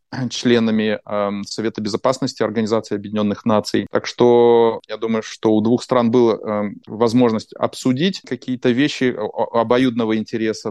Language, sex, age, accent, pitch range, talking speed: Russian, male, 30-49, native, 105-130 Hz, 130 wpm